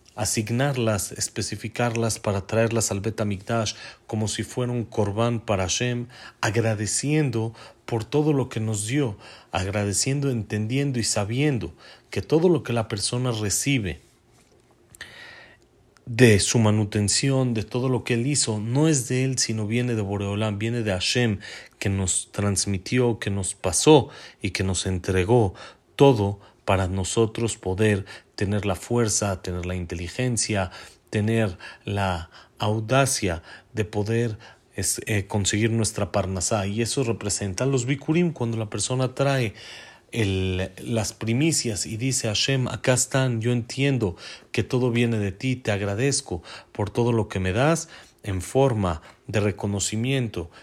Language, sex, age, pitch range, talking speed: Spanish, male, 40-59, 100-125 Hz, 135 wpm